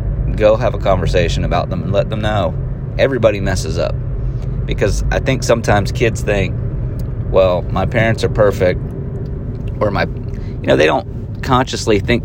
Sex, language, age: male, English, 30-49